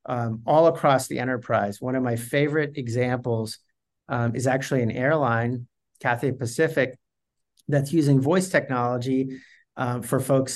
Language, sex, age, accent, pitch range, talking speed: English, male, 50-69, American, 125-140 Hz, 135 wpm